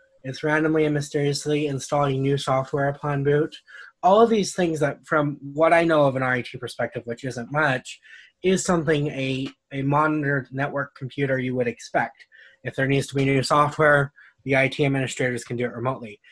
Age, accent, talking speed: 20-39, American, 180 wpm